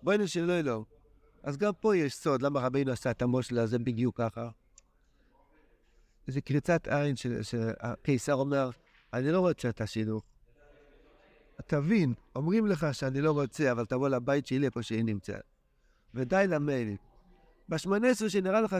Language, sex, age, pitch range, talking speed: Hebrew, male, 60-79, 120-170 Hz, 145 wpm